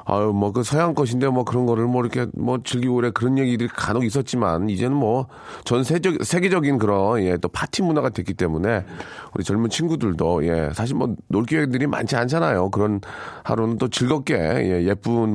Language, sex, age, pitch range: Korean, male, 40-59, 100-145 Hz